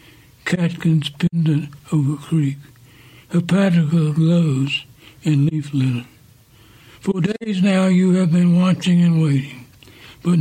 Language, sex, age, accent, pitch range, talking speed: English, male, 60-79, American, 140-175 Hz, 120 wpm